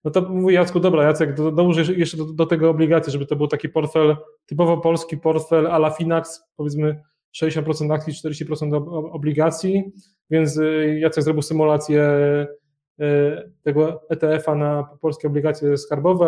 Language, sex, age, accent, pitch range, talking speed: Polish, male, 20-39, native, 150-165 Hz, 145 wpm